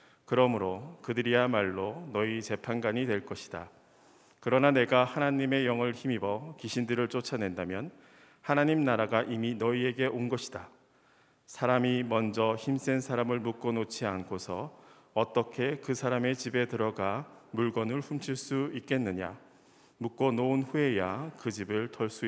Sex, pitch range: male, 105-130 Hz